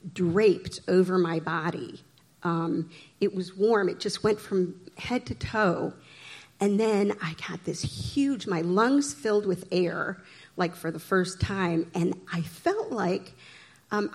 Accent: American